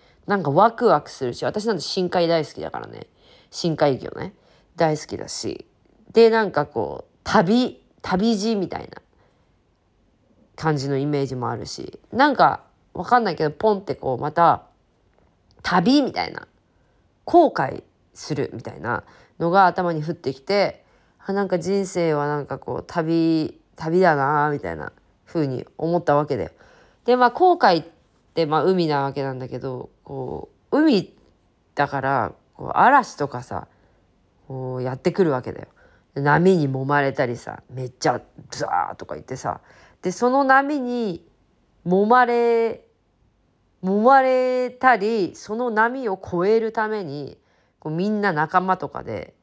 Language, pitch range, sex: Japanese, 140-215 Hz, female